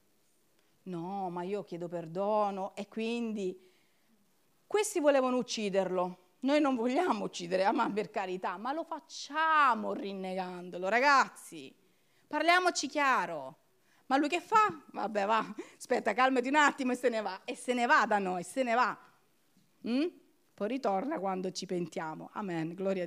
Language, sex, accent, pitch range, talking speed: Italian, female, native, 200-340 Hz, 145 wpm